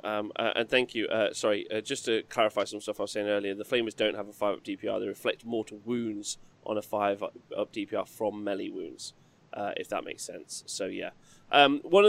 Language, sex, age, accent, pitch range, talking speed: English, male, 20-39, British, 110-145 Hz, 225 wpm